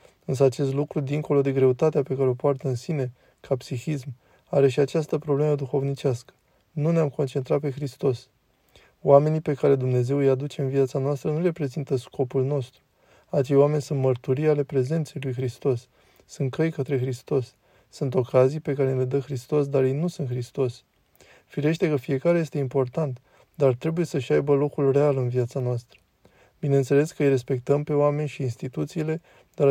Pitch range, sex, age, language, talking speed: 130-150 Hz, male, 20-39, Romanian, 170 wpm